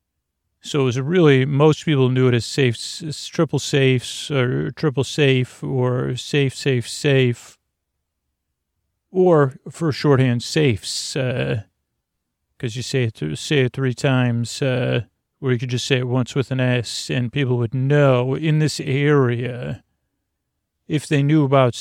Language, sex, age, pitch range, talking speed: English, male, 40-59, 115-135 Hz, 150 wpm